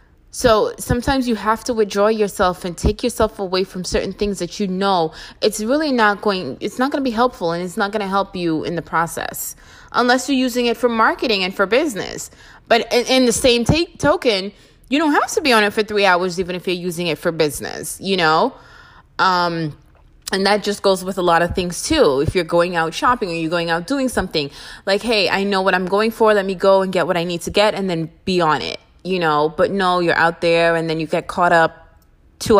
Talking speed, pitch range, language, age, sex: 235 wpm, 165-215 Hz, English, 20-39, female